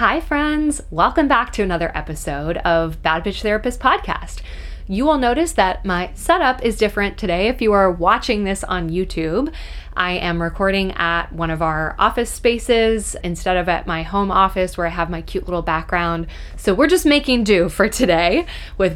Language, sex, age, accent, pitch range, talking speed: English, female, 20-39, American, 175-225 Hz, 185 wpm